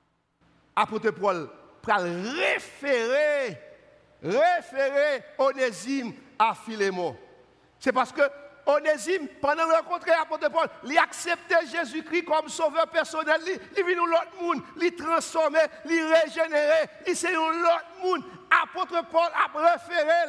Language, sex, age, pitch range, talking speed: French, male, 60-79, 235-330 Hz, 120 wpm